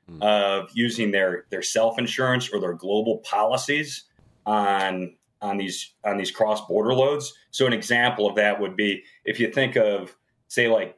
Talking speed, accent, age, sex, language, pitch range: 160 wpm, American, 30-49, male, English, 100-120 Hz